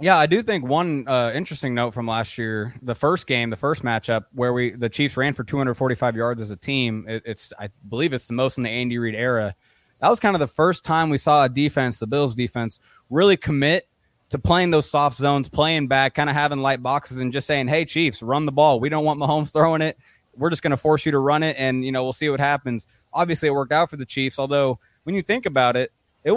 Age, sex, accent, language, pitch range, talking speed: 20-39, male, American, English, 125-150 Hz, 255 wpm